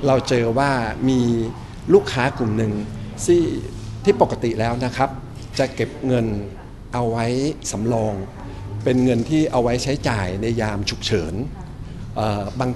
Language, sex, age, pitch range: Thai, male, 60-79, 110-135 Hz